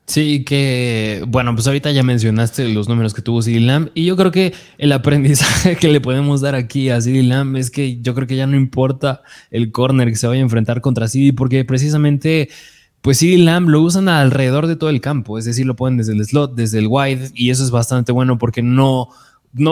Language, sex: Spanish, male